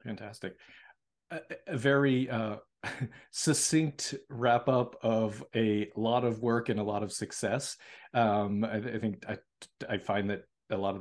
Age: 40-59